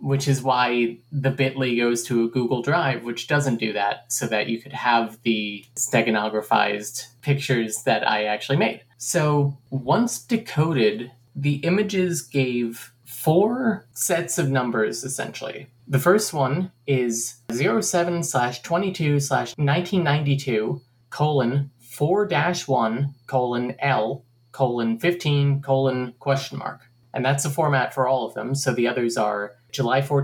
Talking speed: 125 wpm